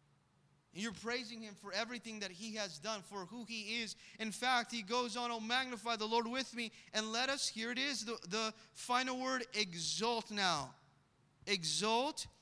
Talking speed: 180 wpm